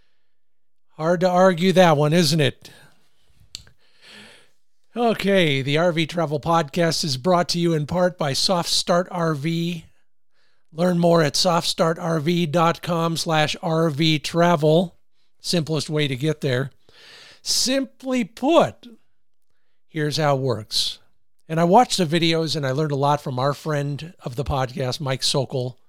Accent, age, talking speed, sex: American, 50-69, 130 wpm, male